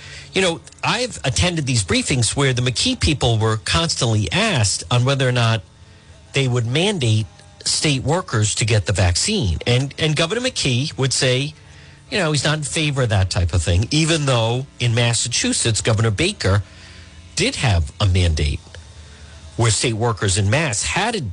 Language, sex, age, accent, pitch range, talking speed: English, male, 50-69, American, 85-140 Hz, 165 wpm